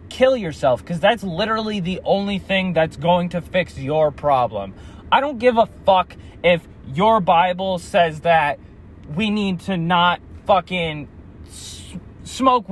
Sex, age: male, 20-39